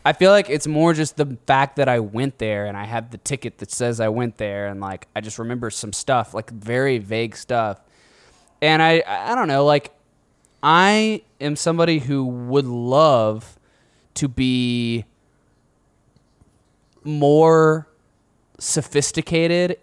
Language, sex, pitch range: English, male, 115-150 Hz